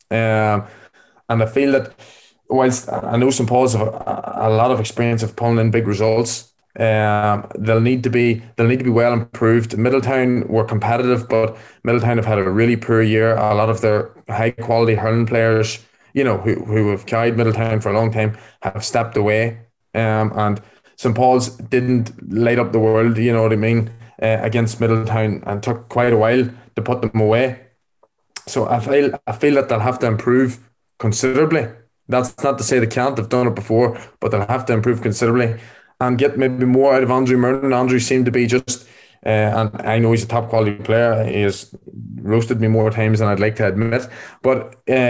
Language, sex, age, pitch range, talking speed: English, male, 20-39, 110-125 Hz, 200 wpm